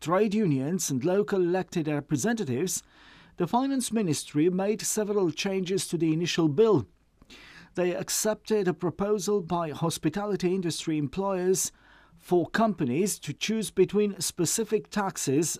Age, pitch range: 50-69, 160-205 Hz